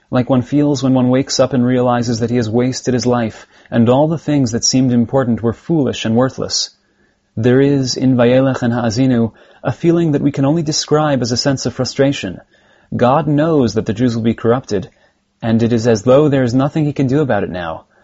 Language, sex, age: English, male, 30-49